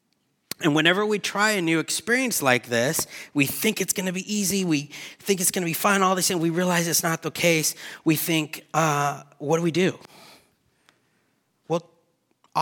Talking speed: 190 wpm